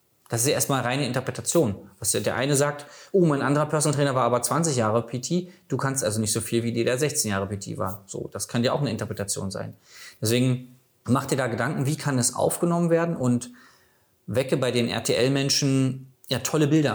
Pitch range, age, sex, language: 110-140 Hz, 20-39, male, German